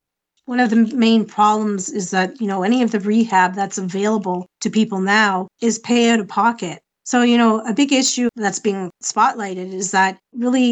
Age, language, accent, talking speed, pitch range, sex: 40-59, English, American, 195 wpm, 195-230 Hz, female